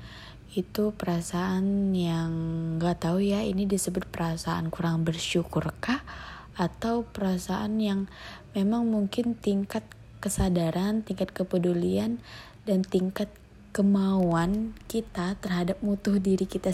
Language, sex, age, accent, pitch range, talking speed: Indonesian, female, 20-39, native, 165-200 Hz, 105 wpm